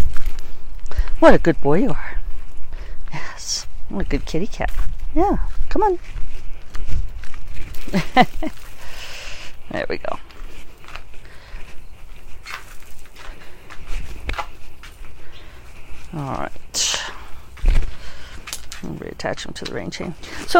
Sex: female